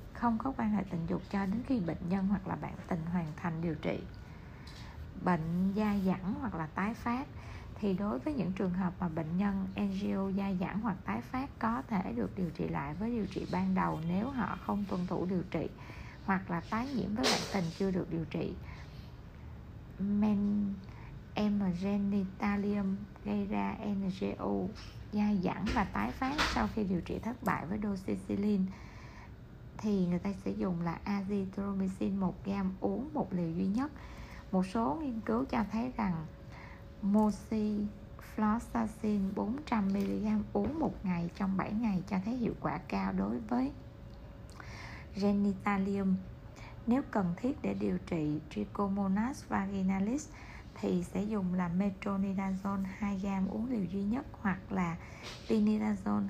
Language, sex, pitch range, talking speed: Vietnamese, female, 175-210 Hz, 160 wpm